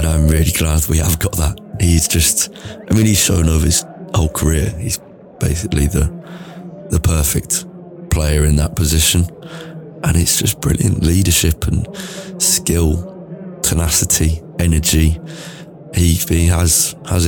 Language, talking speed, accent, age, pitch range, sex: English, 140 wpm, British, 20-39, 75-95 Hz, male